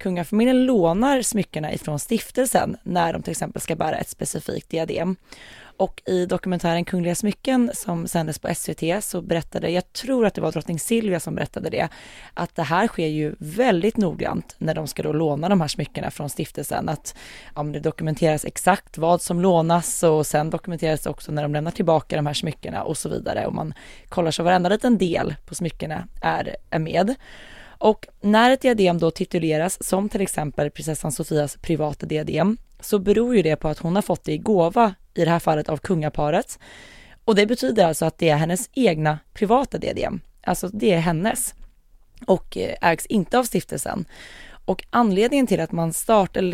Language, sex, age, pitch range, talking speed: English, female, 20-39, 160-205 Hz, 185 wpm